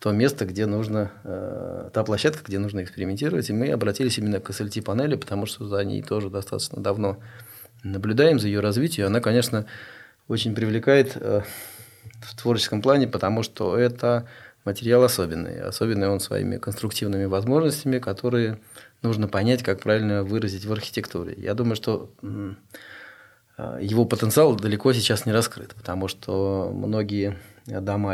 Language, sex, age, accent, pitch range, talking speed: Russian, male, 20-39, native, 100-120 Hz, 135 wpm